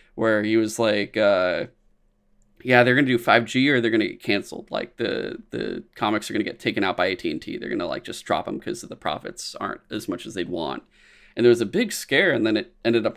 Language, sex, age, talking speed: English, male, 20-39, 255 wpm